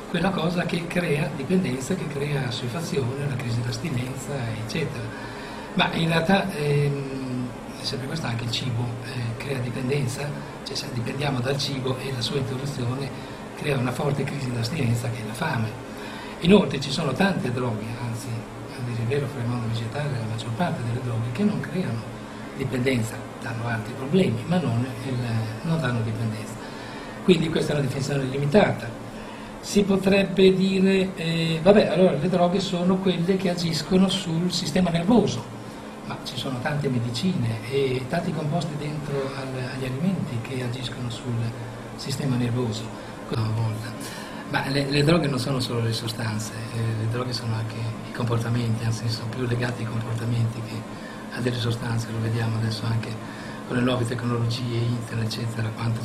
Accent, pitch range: native, 115-145 Hz